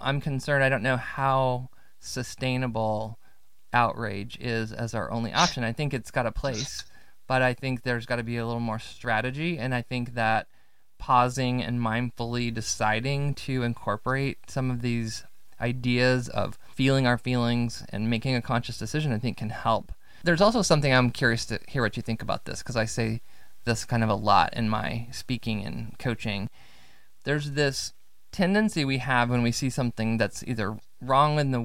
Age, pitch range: 20-39, 115-135 Hz